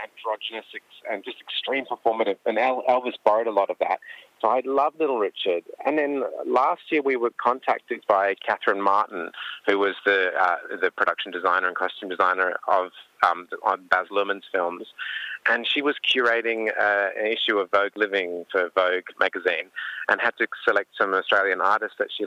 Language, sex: English, male